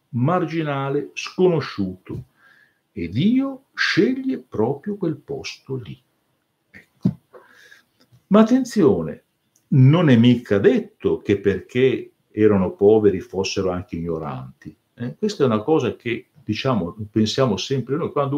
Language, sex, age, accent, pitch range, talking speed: Italian, male, 60-79, native, 105-165 Hz, 110 wpm